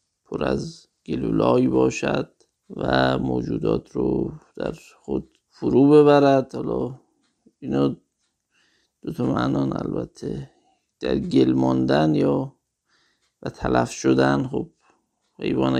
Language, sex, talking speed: Persian, male, 90 wpm